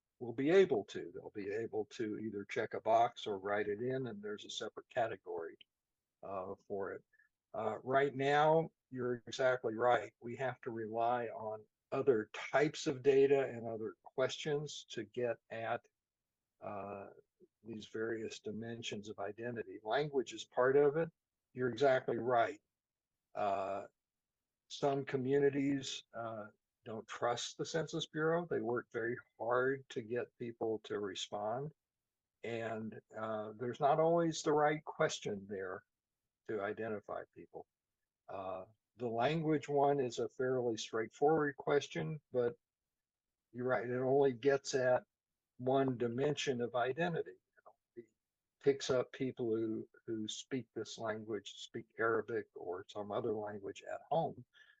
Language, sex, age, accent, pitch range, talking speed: English, male, 60-79, American, 115-150 Hz, 140 wpm